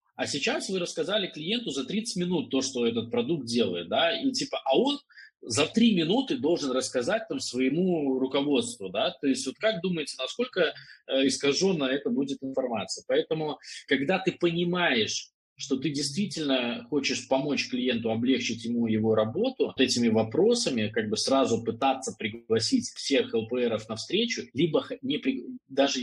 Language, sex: Russian, male